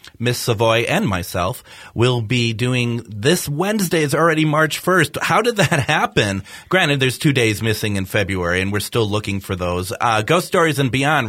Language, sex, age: English, male, 30-49